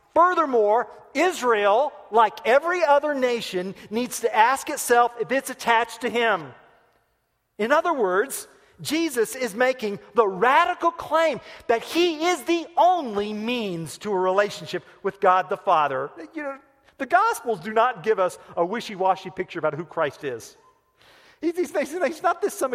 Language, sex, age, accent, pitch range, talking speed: English, male, 40-59, American, 195-285 Hz, 150 wpm